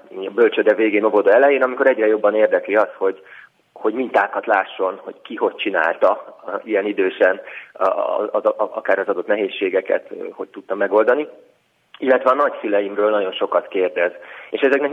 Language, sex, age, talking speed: Hungarian, male, 30-49, 150 wpm